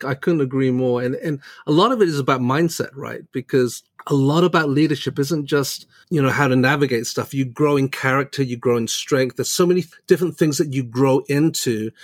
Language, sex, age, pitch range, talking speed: English, male, 40-59, 130-160 Hz, 220 wpm